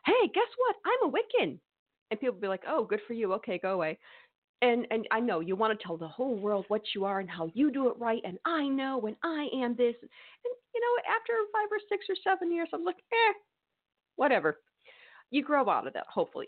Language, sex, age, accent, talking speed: English, female, 40-59, American, 235 wpm